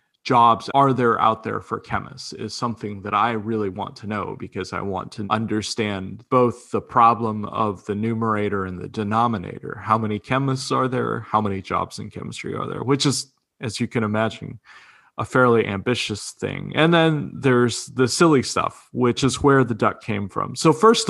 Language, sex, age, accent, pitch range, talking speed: English, male, 20-39, American, 105-130 Hz, 190 wpm